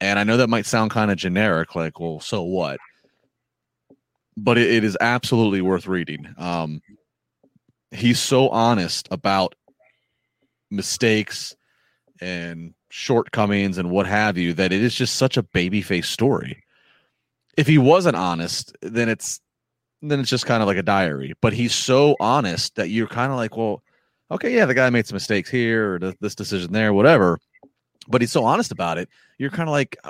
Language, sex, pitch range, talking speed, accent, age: English, male, 90-120 Hz, 170 wpm, American, 30-49